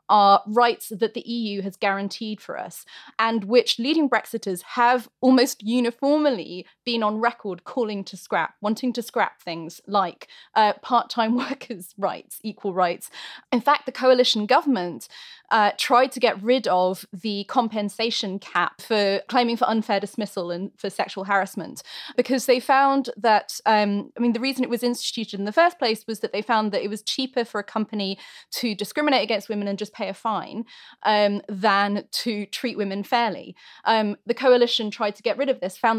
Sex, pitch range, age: female, 200-250 Hz, 20-39